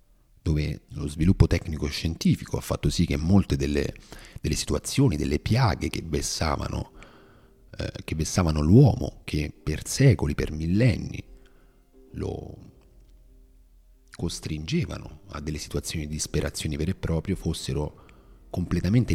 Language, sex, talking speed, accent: Italian, male, 110 wpm, native